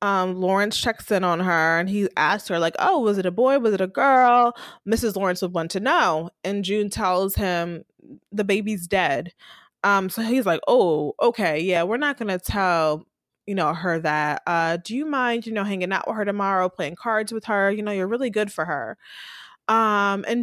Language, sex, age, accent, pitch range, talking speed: English, female, 20-39, American, 195-305 Hz, 215 wpm